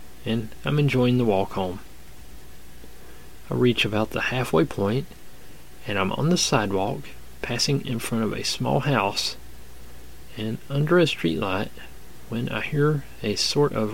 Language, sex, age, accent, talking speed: English, male, 40-59, American, 150 wpm